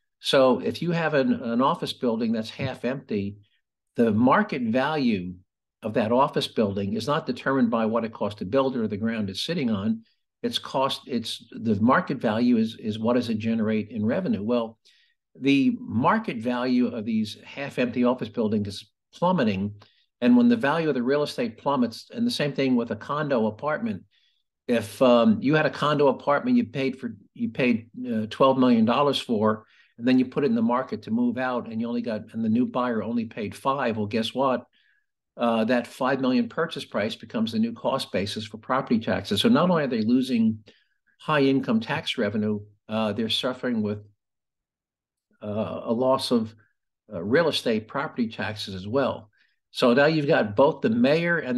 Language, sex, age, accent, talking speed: English, male, 50-69, American, 190 wpm